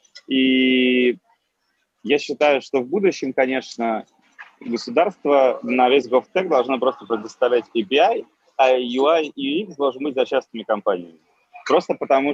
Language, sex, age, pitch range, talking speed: Russian, male, 30-49, 110-140 Hz, 125 wpm